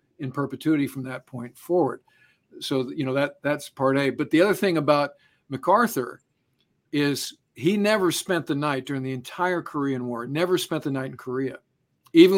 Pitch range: 135-165 Hz